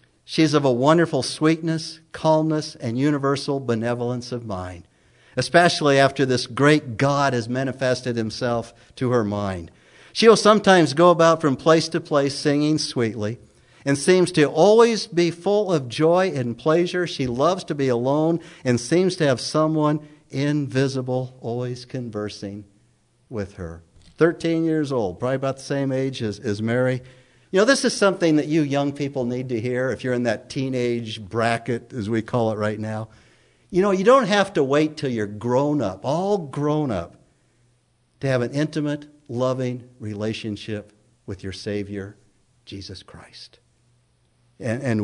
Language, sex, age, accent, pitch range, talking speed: English, male, 50-69, American, 115-150 Hz, 160 wpm